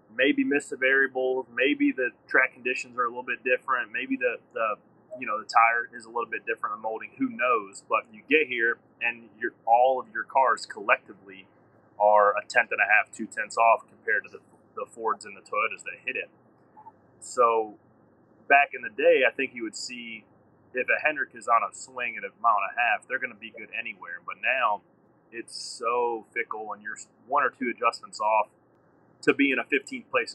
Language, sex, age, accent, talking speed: English, male, 30-49, American, 210 wpm